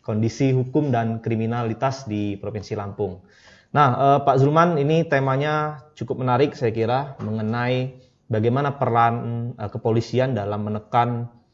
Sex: male